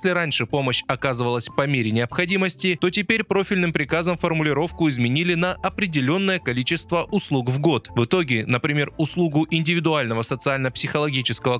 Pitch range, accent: 130-180 Hz, native